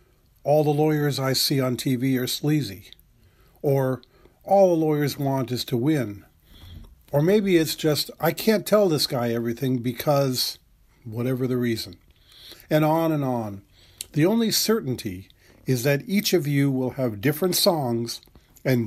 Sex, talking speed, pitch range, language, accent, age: male, 155 wpm, 120-165 Hz, English, American, 50-69